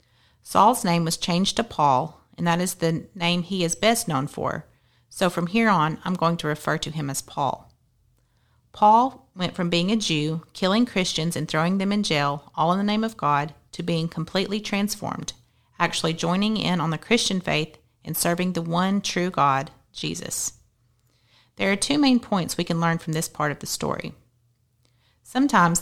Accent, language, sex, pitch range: American, English, female, 150-190 Hz